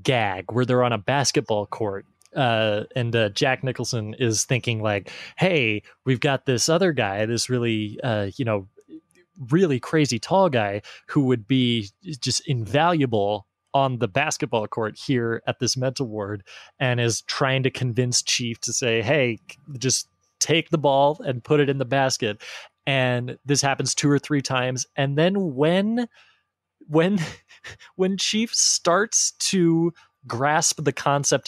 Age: 20-39